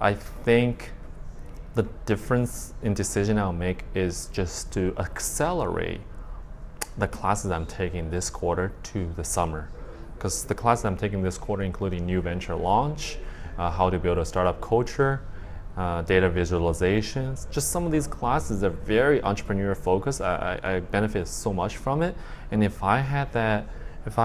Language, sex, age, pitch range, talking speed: English, male, 20-39, 85-105 Hz, 160 wpm